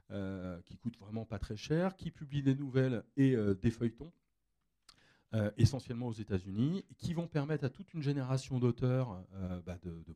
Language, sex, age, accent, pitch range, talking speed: French, male, 40-59, French, 90-120 Hz, 190 wpm